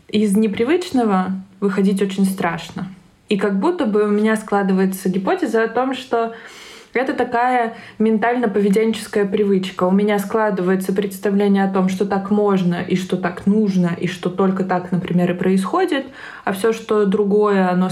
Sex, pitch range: female, 185-220 Hz